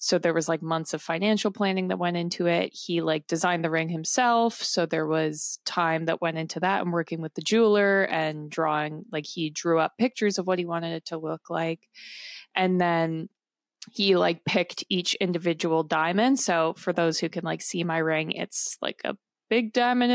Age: 20-39